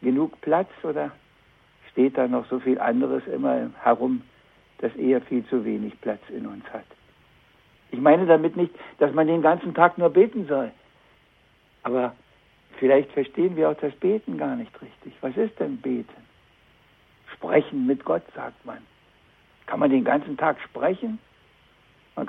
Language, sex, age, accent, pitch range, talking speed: German, male, 60-79, German, 130-175 Hz, 155 wpm